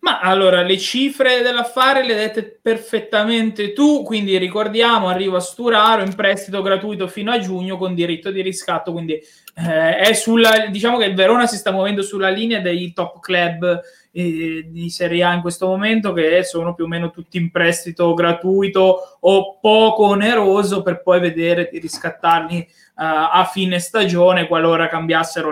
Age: 20-39